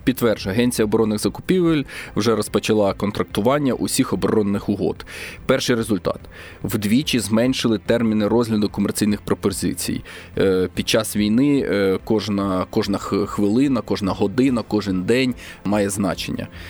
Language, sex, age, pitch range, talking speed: Ukrainian, male, 20-39, 100-120 Hz, 110 wpm